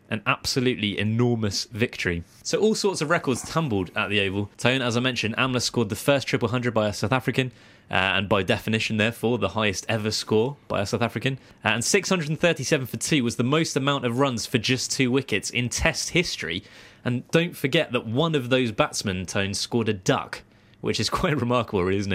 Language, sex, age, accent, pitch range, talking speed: English, male, 20-39, British, 105-130 Hz, 200 wpm